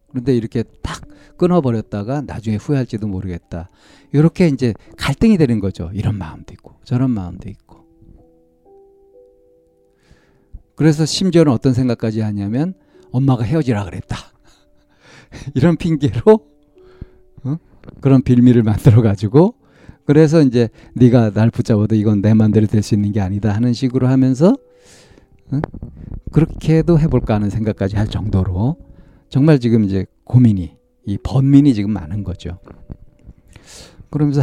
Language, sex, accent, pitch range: Korean, male, native, 105-140 Hz